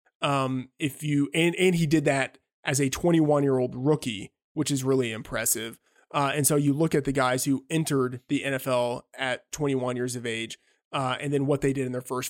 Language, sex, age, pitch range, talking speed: English, male, 20-39, 125-150 Hz, 215 wpm